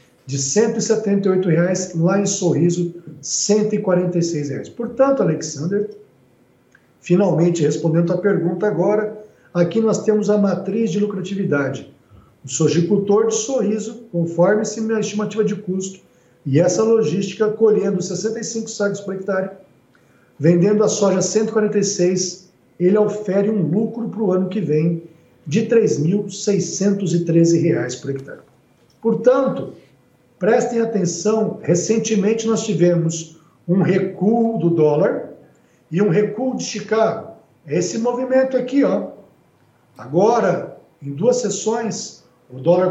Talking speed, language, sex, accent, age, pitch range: 115 wpm, Portuguese, male, Brazilian, 50-69, 170-215 Hz